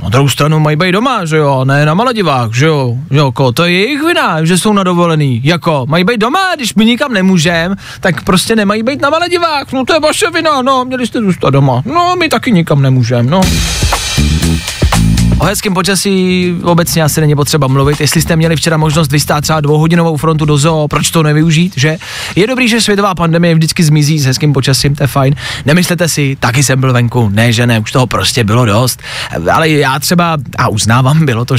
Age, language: 20-39, Czech